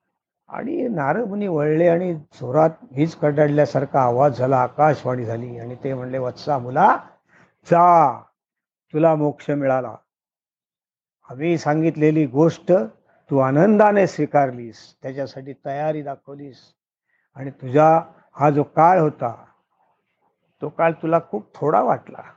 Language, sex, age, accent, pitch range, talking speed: Marathi, male, 50-69, native, 130-165 Hz, 110 wpm